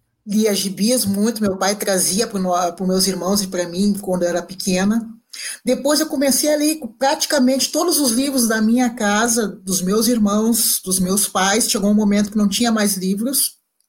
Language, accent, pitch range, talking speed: Portuguese, Brazilian, 205-275 Hz, 185 wpm